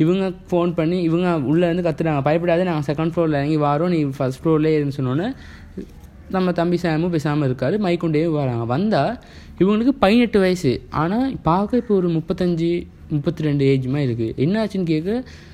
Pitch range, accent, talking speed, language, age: 130-175 Hz, native, 150 wpm, Tamil, 20-39